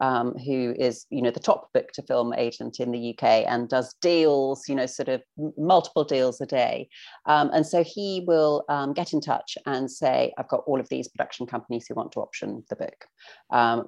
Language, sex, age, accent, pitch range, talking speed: English, female, 40-59, British, 120-150 Hz, 215 wpm